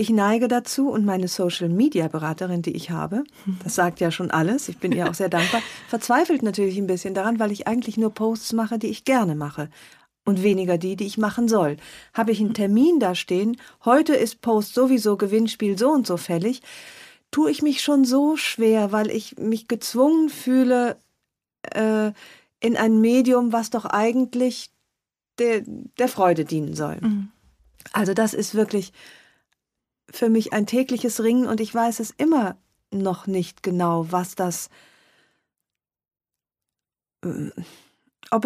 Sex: female